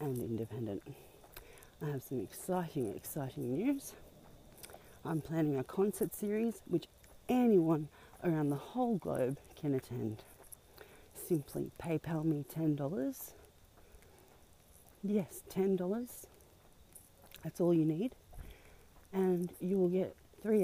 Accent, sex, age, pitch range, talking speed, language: Australian, female, 40-59, 130-185 Hz, 100 wpm, English